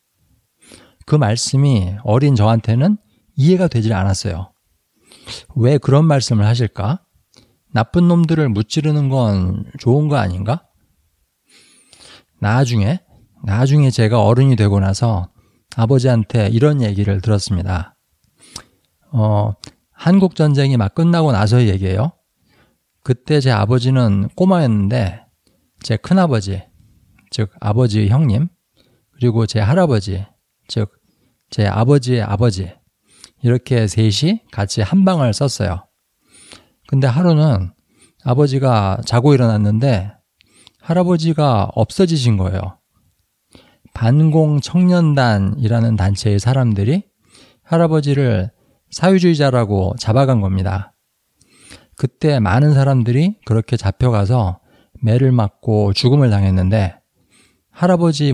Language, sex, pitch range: Korean, male, 105-140 Hz